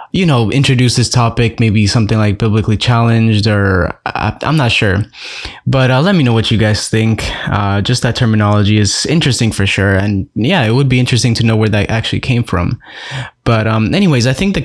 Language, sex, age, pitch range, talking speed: English, male, 10-29, 110-125 Hz, 205 wpm